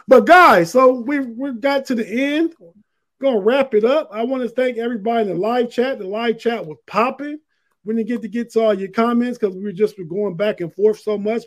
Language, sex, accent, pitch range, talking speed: English, male, American, 195-240 Hz, 235 wpm